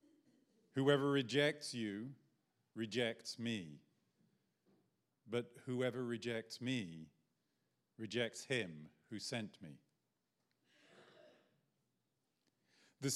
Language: English